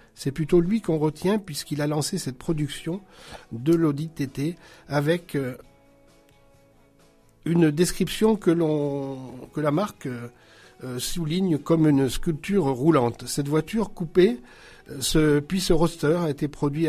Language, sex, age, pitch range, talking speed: French, male, 60-79, 145-175 Hz, 120 wpm